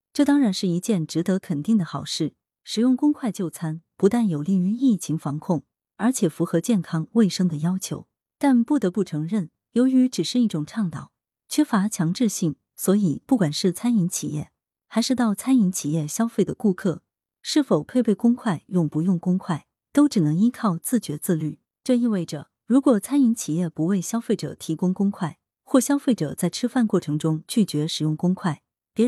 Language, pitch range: Chinese, 160-230 Hz